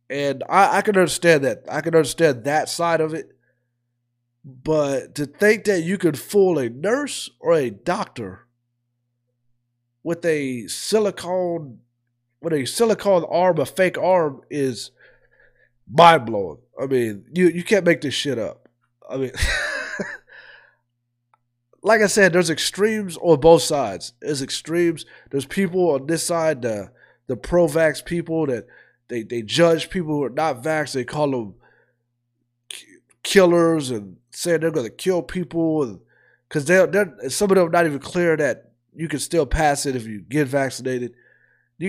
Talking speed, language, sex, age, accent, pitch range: 160 wpm, English, male, 30-49, American, 120-170 Hz